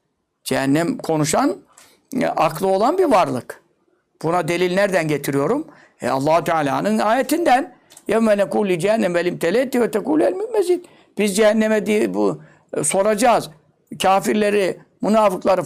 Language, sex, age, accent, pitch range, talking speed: Turkish, male, 60-79, native, 170-225 Hz, 100 wpm